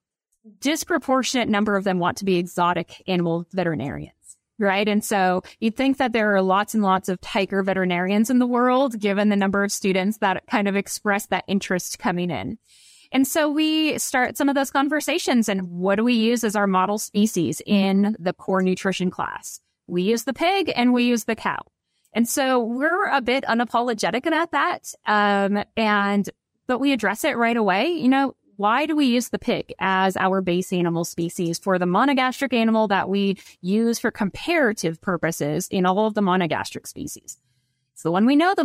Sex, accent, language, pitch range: female, American, English, 190-250 Hz